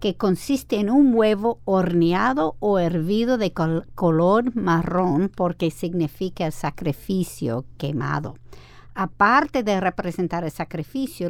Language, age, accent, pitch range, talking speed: Spanish, 50-69, American, 170-215 Hz, 105 wpm